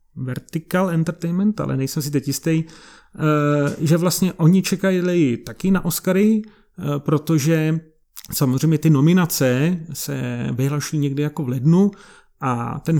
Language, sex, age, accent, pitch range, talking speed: Czech, male, 40-59, native, 145-165 Hz, 120 wpm